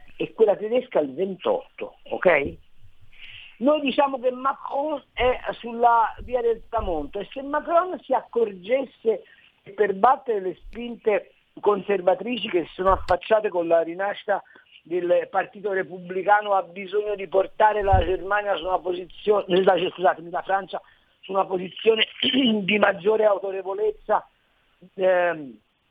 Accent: native